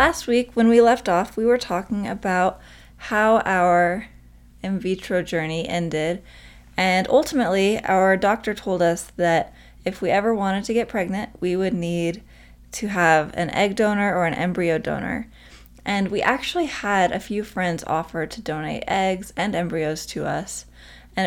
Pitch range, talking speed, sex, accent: 160-210 Hz, 165 wpm, female, American